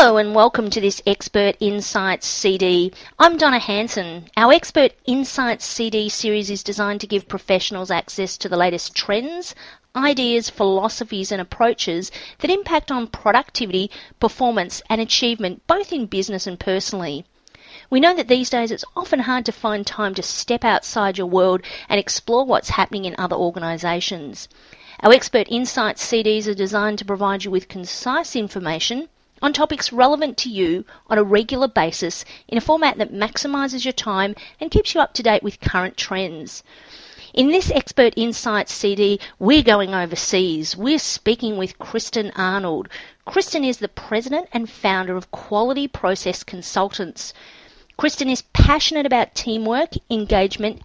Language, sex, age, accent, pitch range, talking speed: English, female, 40-59, Australian, 195-255 Hz, 155 wpm